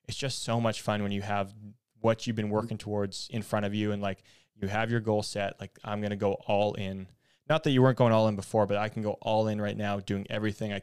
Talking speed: 275 wpm